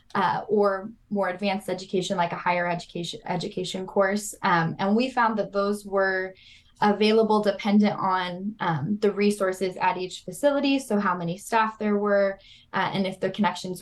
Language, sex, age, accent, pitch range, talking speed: English, female, 10-29, American, 185-215 Hz, 165 wpm